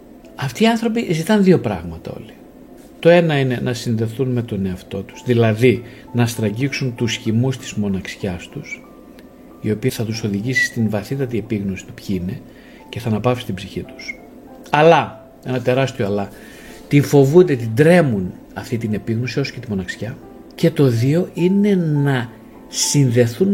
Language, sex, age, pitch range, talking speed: Greek, male, 50-69, 115-180 Hz, 160 wpm